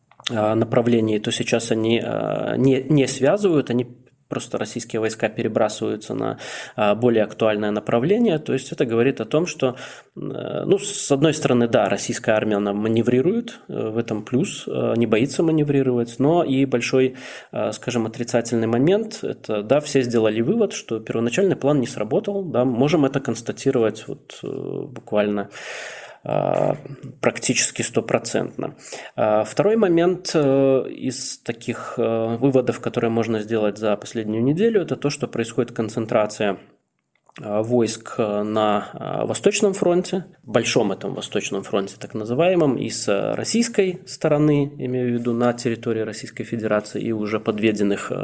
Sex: male